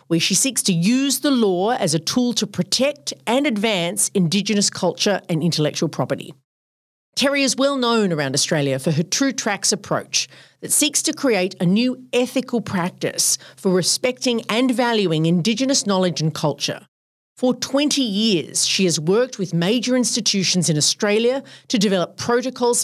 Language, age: English, 40-59